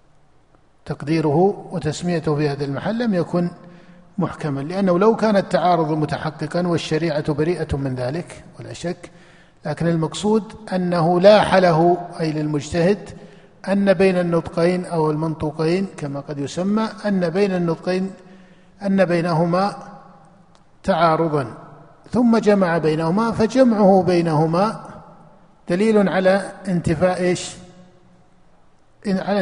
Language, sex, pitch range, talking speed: Arabic, male, 155-195 Hz, 100 wpm